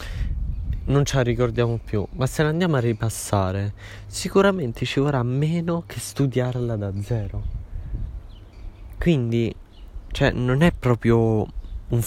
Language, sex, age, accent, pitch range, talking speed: Italian, male, 20-39, native, 90-120 Hz, 125 wpm